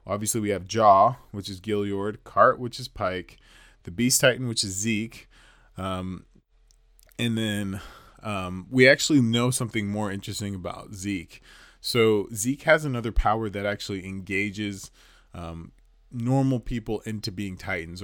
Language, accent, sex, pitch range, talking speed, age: English, American, male, 95-115 Hz, 145 wpm, 20-39